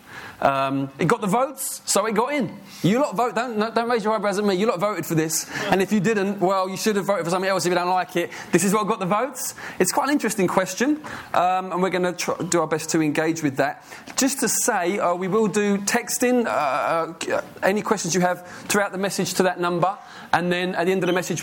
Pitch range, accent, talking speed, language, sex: 165-200 Hz, British, 260 wpm, English, male